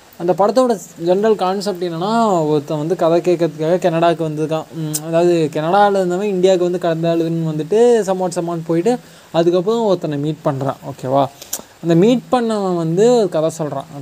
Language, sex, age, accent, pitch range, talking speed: Tamil, male, 20-39, native, 145-185 Hz, 145 wpm